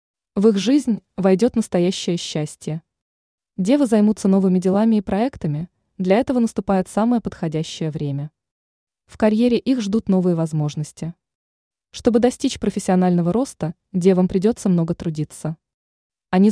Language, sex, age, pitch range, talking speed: Russian, female, 20-39, 165-220 Hz, 120 wpm